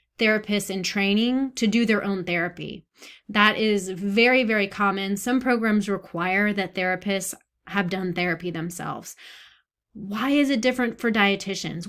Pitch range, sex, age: 195-245 Hz, female, 20-39